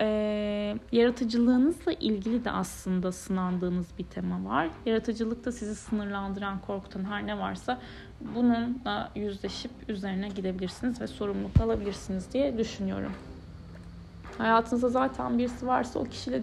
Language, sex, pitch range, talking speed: Turkish, female, 190-245 Hz, 115 wpm